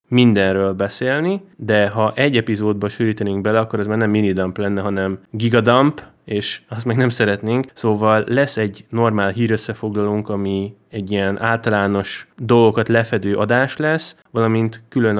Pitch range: 100-115 Hz